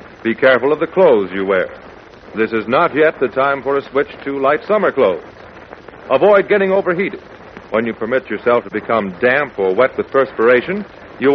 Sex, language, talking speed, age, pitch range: male, English, 185 wpm, 60-79, 115-195 Hz